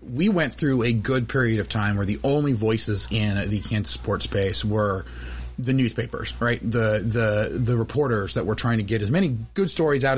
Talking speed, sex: 205 wpm, male